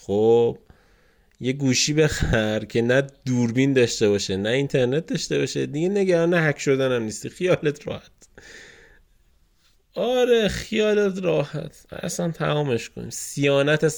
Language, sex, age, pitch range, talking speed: Persian, male, 20-39, 105-145 Hz, 135 wpm